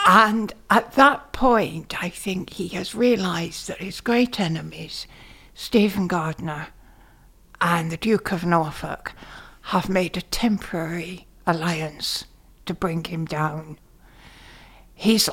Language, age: Dutch, 60-79